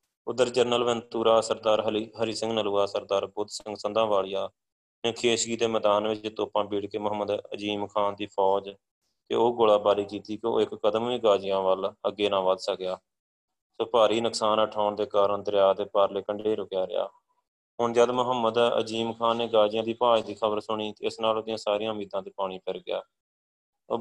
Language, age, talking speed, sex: Punjabi, 20-39, 180 wpm, male